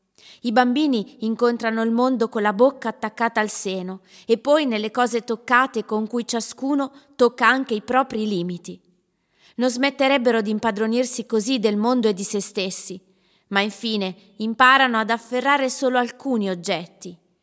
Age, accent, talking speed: 20-39, native, 150 wpm